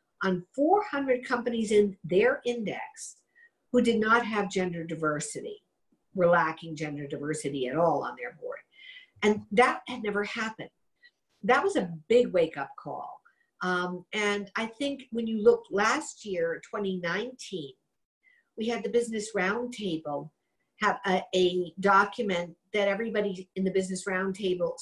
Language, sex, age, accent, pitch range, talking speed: English, female, 50-69, American, 185-240 Hz, 140 wpm